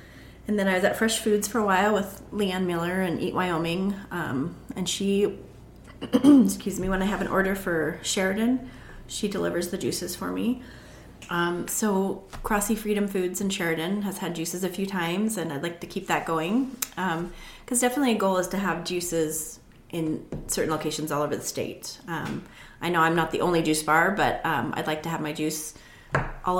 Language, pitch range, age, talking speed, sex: English, 165-200 Hz, 30-49, 200 wpm, female